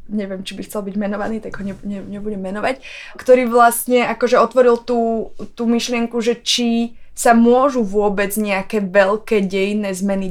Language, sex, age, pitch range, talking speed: Slovak, female, 20-39, 195-235 Hz, 150 wpm